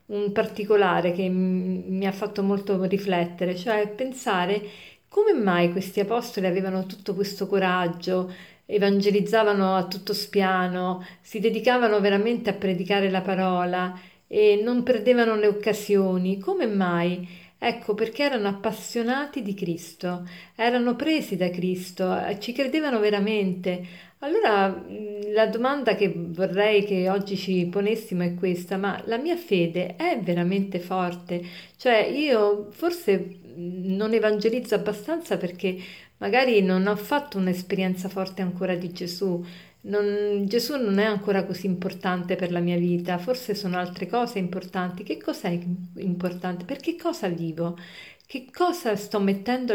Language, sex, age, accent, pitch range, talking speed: Italian, female, 50-69, native, 185-215 Hz, 135 wpm